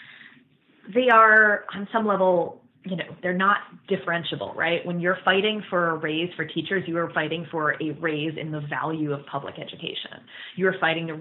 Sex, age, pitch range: female, 20-39, 145-180 Hz